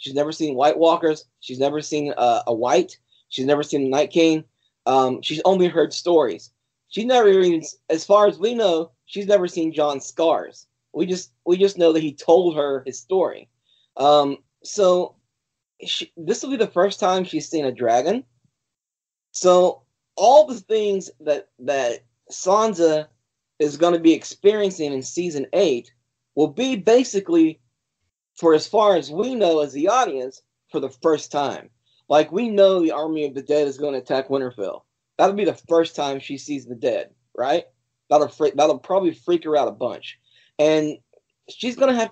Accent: American